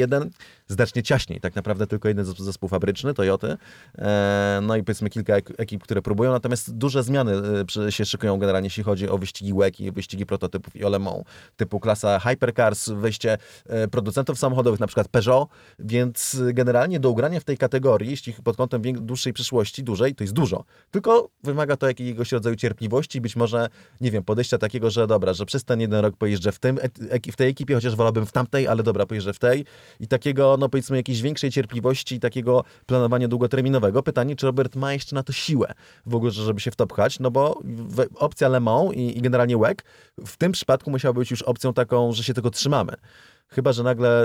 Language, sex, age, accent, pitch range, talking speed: Polish, male, 30-49, native, 100-130 Hz, 190 wpm